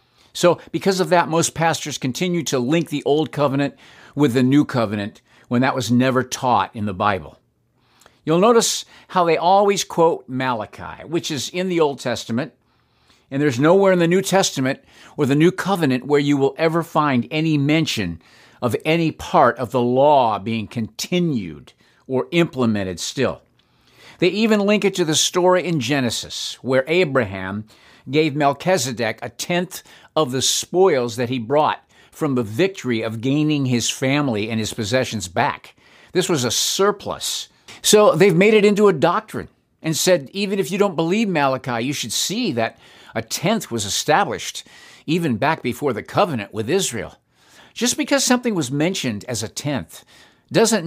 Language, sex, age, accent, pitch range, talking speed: English, male, 50-69, American, 120-175 Hz, 165 wpm